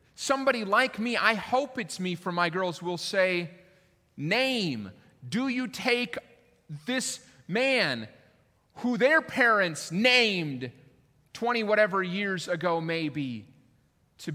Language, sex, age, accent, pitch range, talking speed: English, male, 30-49, American, 150-235 Hz, 115 wpm